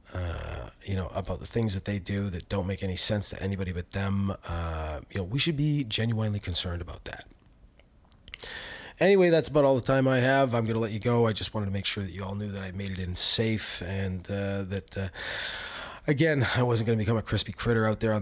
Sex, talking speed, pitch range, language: male, 240 wpm, 90-105 Hz, English